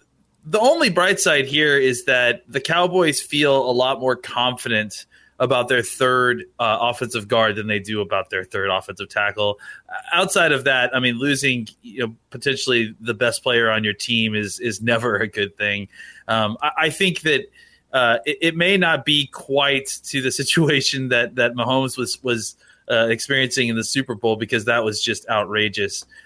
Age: 30-49